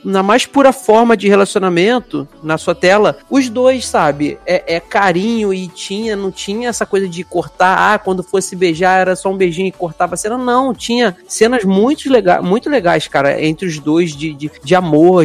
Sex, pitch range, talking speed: male, 155-210 Hz, 195 wpm